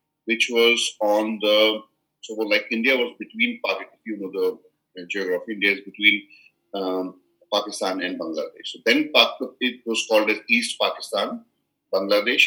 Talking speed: 155 wpm